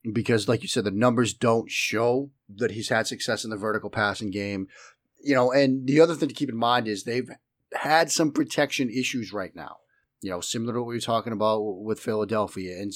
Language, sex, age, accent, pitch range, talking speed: English, male, 30-49, American, 110-135 Hz, 220 wpm